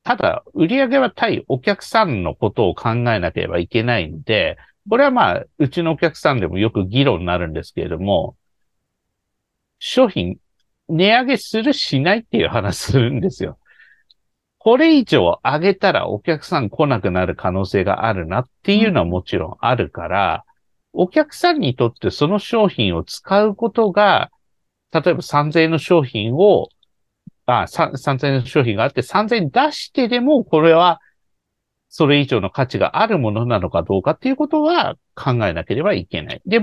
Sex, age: male, 50-69